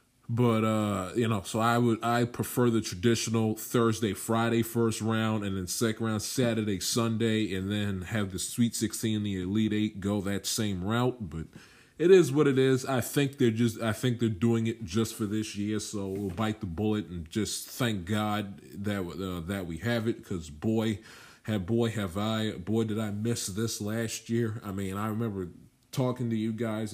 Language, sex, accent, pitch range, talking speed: English, male, American, 100-115 Hz, 200 wpm